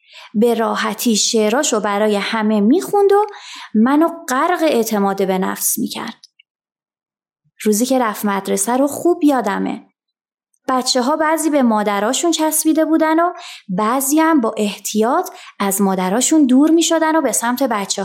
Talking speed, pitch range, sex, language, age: 135 wpm, 220-310 Hz, female, Persian, 20-39